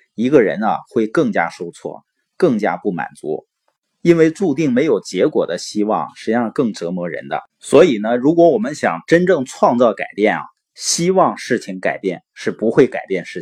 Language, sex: Chinese, male